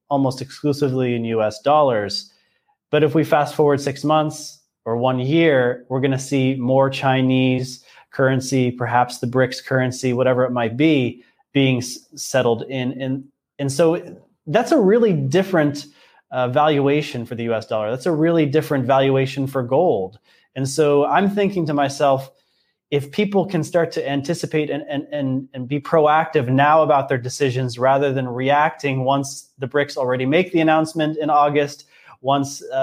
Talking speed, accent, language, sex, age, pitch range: 165 wpm, American, English, male, 20-39, 130-160 Hz